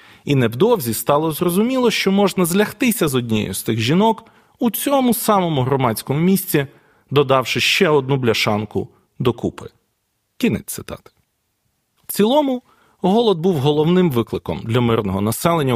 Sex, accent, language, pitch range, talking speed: male, native, Ukrainian, 115-175 Hz, 125 wpm